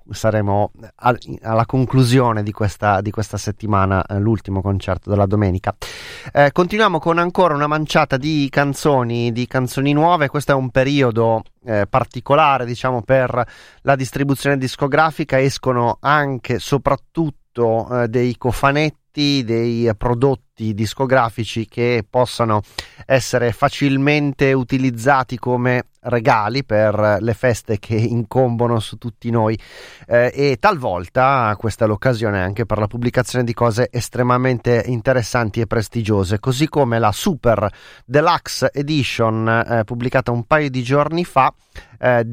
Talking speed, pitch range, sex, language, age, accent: 125 wpm, 115-140 Hz, male, Italian, 30-49, native